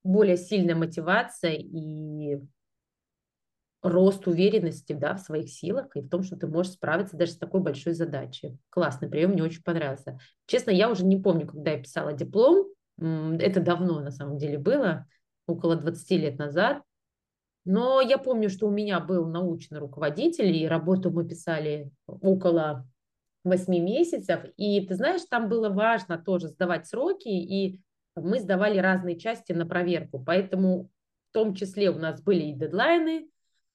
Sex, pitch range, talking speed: female, 160-205 Hz, 155 wpm